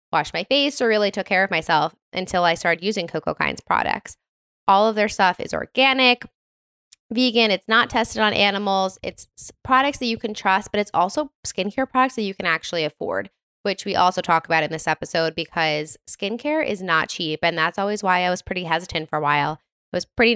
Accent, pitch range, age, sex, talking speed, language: American, 175-215 Hz, 20-39, female, 205 wpm, English